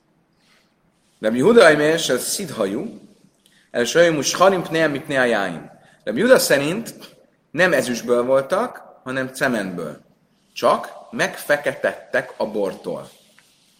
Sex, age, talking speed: male, 40-59, 110 wpm